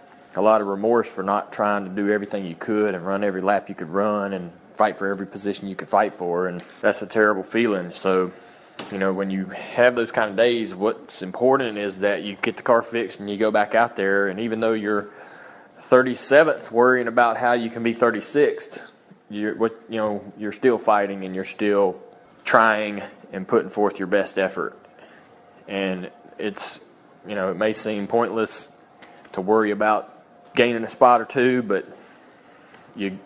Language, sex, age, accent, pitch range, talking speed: English, male, 20-39, American, 95-110 Hz, 185 wpm